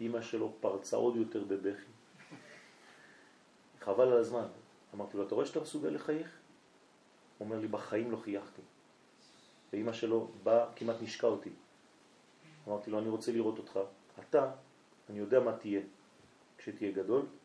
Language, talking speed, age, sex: French, 140 wpm, 40-59, male